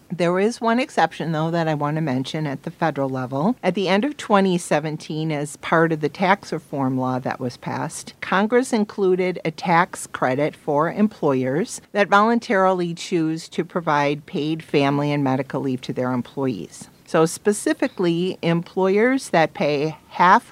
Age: 50-69